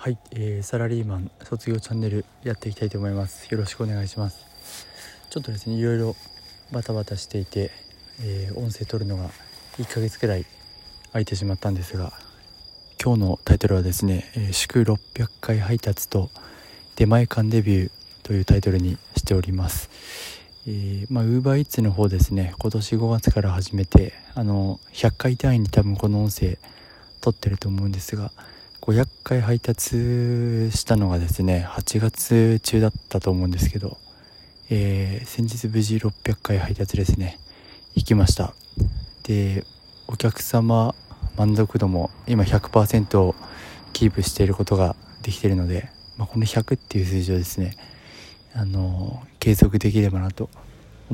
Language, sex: Japanese, male